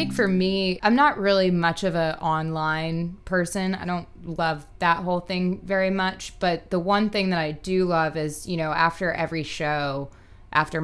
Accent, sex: American, female